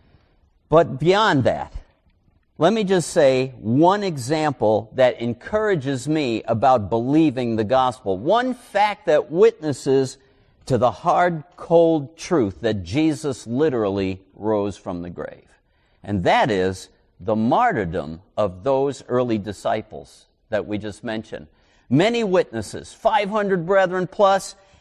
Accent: American